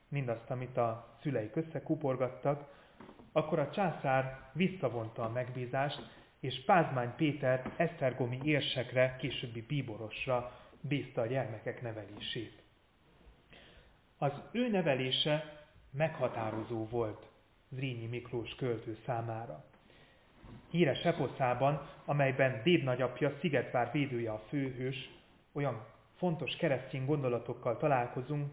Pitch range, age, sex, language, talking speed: 115-145 Hz, 30-49, male, Hungarian, 95 wpm